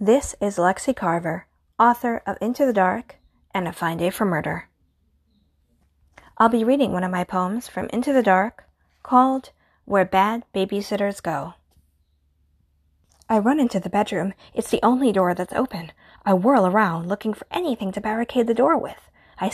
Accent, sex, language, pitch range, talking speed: American, female, English, 165-265 Hz, 165 wpm